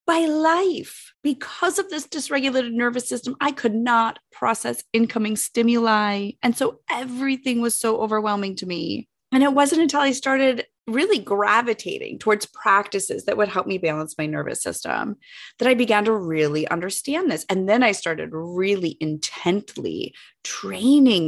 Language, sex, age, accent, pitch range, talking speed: English, female, 30-49, American, 200-280 Hz, 150 wpm